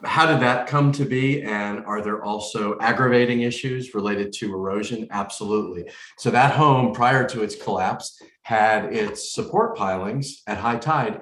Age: 40-59